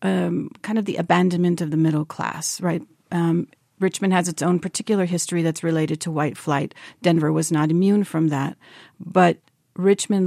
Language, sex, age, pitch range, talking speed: English, female, 50-69, 160-195 Hz, 180 wpm